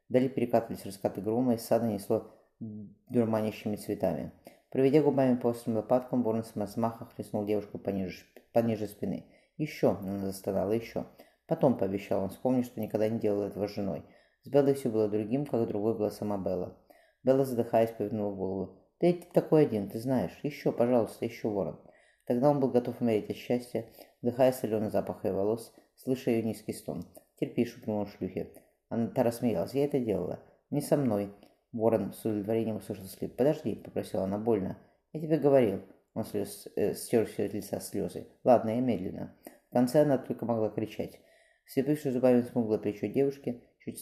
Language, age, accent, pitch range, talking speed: Russian, 20-39, native, 105-125 Hz, 175 wpm